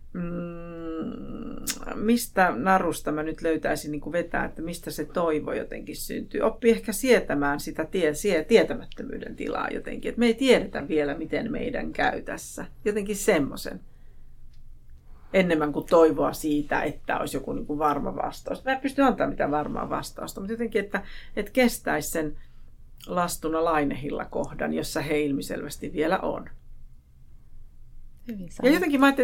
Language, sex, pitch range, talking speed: Finnish, female, 150-220 Hz, 145 wpm